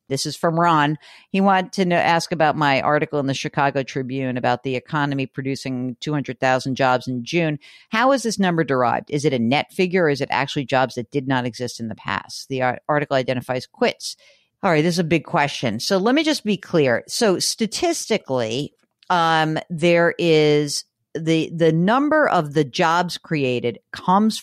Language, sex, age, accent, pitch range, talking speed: English, female, 50-69, American, 135-180 Hz, 185 wpm